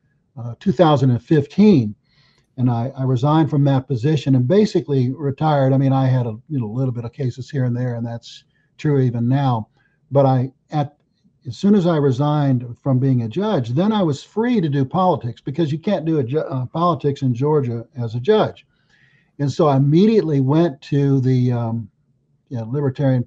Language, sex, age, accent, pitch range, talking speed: English, male, 60-79, American, 125-150 Hz, 190 wpm